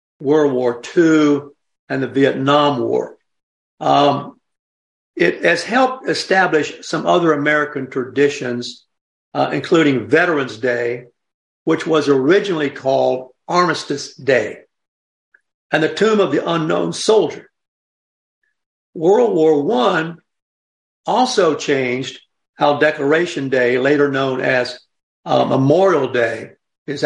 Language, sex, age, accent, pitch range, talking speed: English, male, 60-79, American, 130-165 Hz, 105 wpm